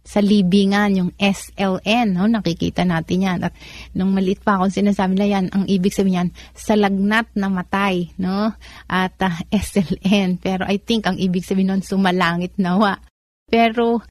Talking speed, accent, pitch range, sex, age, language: 160 wpm, native, 175-205 Hz, female, 30-49, Filipino